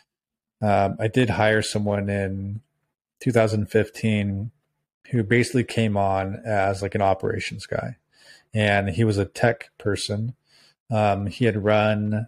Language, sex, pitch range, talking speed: English, male, 105-115 Hz, 125 wpm